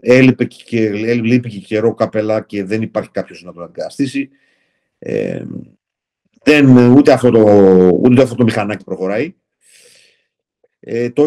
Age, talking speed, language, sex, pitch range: 50-69, 110 wpm, Greek, male, 95-130 Hz